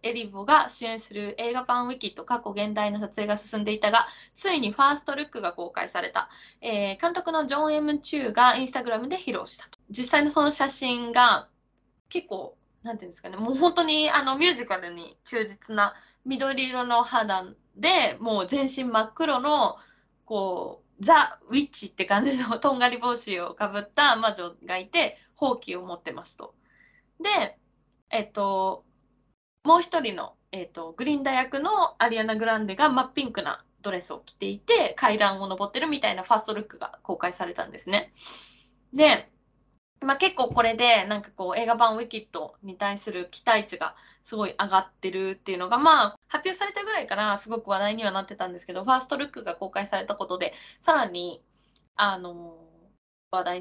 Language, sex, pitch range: Japanese, female, 200-280 Hz